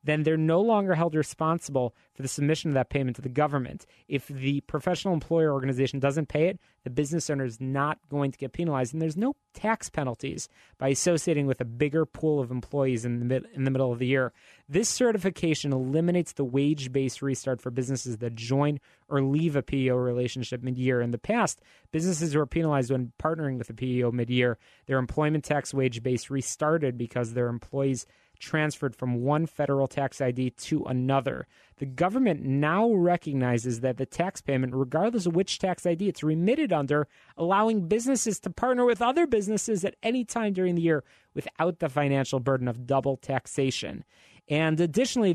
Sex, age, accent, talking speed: male, 30-49, American, 180 wpm